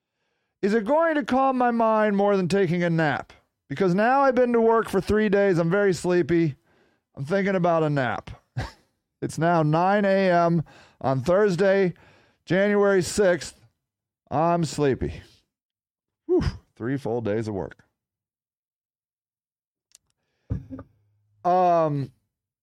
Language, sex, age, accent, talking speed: English, male, 40-59, American, 120 wpm